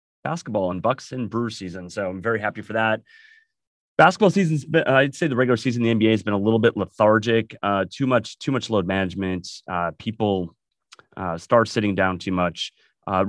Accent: American